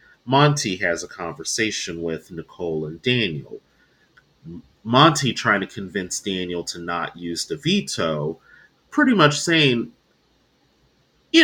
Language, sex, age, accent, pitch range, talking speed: English, male, 30-49, American, 90-140 Hz, 115 wpm